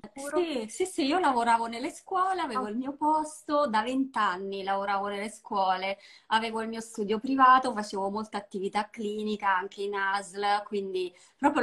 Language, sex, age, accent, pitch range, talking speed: Italian, female, 20-39, native, 200-280 Hz, 155 wpm